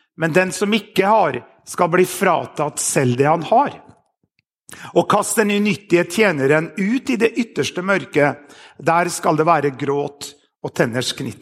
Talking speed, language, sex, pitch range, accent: 145 wpm, English, male, 155-205 Hz, Swedish